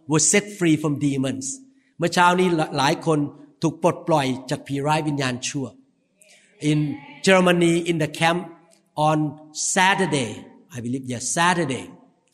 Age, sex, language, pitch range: 50-69, male, Thai, 150-200 Hz